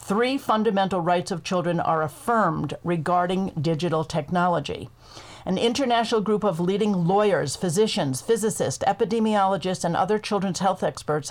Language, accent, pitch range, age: English, American, 165-200 Hz, 50-69